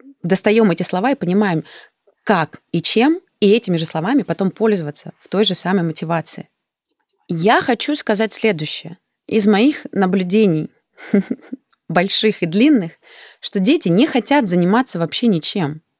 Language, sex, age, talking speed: Russian, female, 20-39, 135 wpm